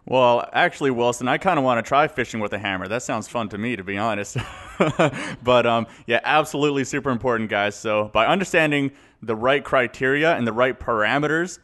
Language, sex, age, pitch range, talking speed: English, male, 30-49, 110-140 Hz, 195 wpm